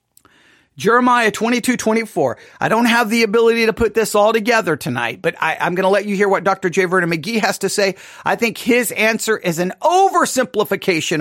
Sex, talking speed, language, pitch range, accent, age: male, 210 wpm, English, 180-235 Hz, American, 50-69